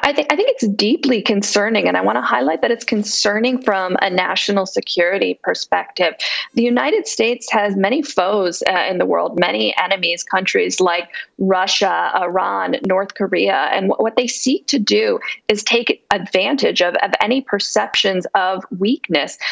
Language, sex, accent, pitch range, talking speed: English, female, American, 190-235 Hz, 155 wpm